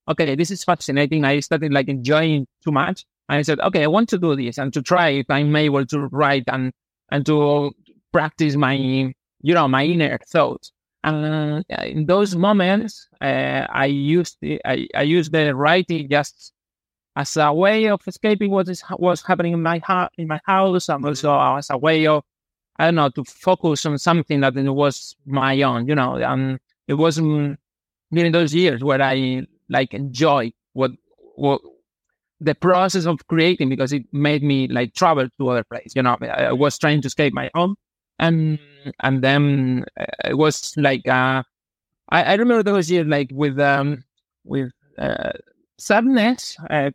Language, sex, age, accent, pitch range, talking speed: English, male, 30-49, Spanish, 135-170 Hz, 175 wpm